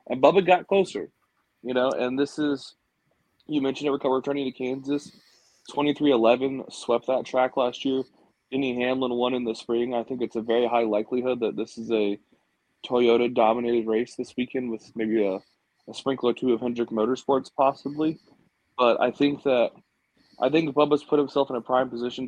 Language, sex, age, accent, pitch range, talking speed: English, male, 20-39, American, 115-140 Hz, 180 wpm